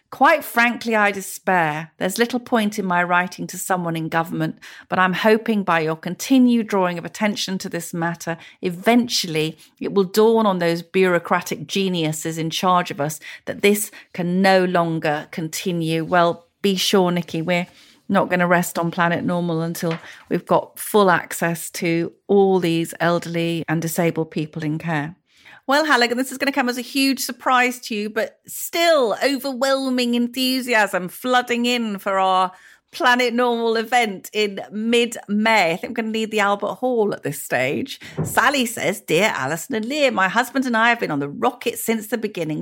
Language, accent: English, British